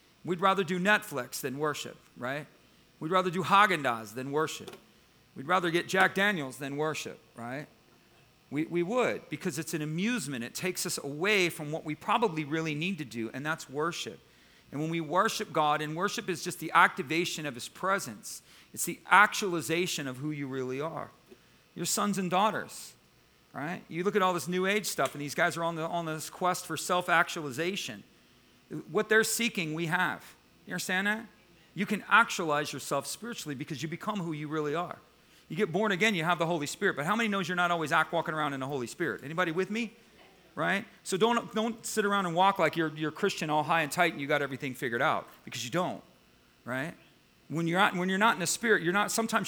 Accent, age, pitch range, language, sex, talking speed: American, 40-59, 155-195 Hz, English, male, 210 wpm